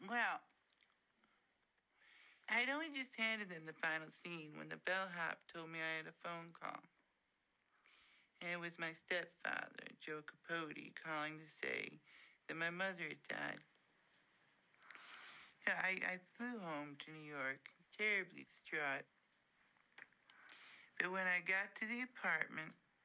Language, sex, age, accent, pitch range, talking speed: English, male, 60-79, American, 160-185 Hz, 130 wpm